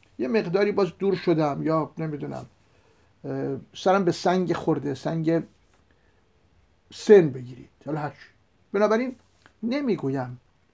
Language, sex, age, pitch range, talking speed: Persian, male, 60-79, 120-180 Hz, 100 wpm